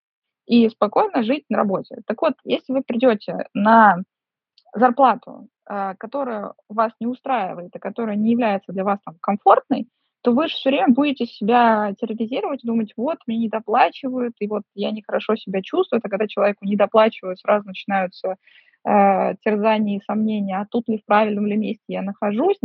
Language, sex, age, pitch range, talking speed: Russian, female, 20-39, 205-245 Hz, 160 wpm